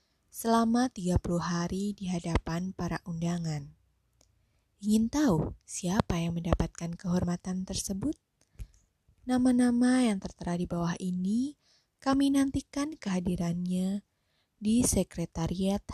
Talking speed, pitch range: 95 wpm, 165-220 Hz